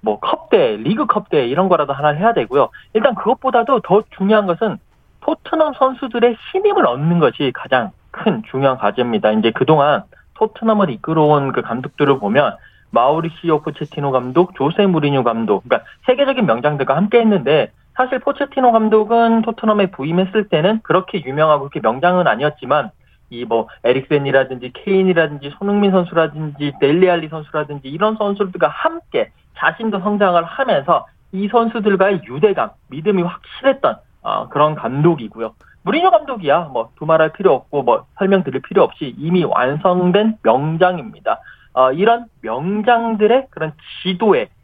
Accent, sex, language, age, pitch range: native, male, Korean, 40-59, 150-225 Hz